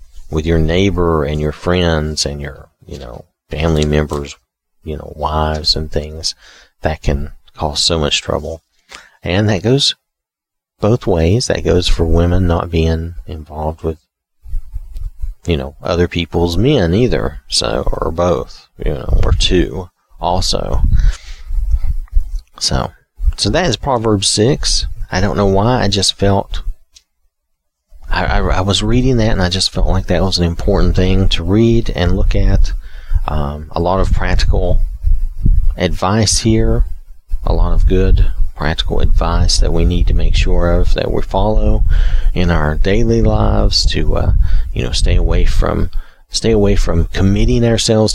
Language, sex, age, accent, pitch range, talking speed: English, male, 40-59, American, 75-95 Hz, 150 wpm